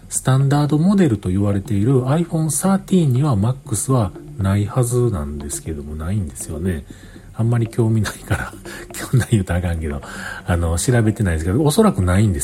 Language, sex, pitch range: Japanese, male, 100-155 Hz